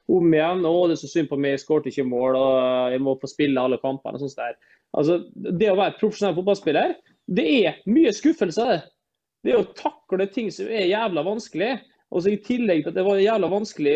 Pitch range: 165-225 Hz